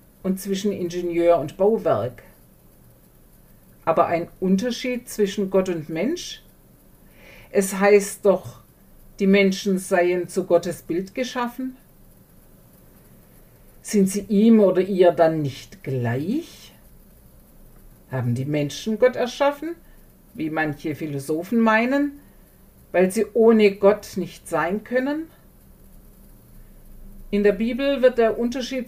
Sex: female